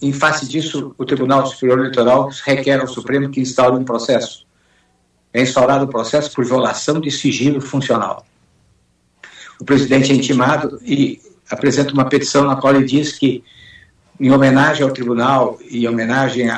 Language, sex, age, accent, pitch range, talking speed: Portuguese, male, 60-79, Brazilian, 115-150 Hz, 155 wpm